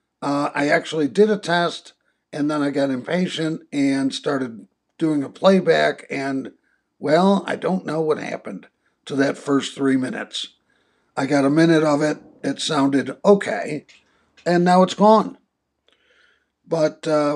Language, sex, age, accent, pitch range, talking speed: English, male, 60-79, American, 140-175 Hz, 150 wpm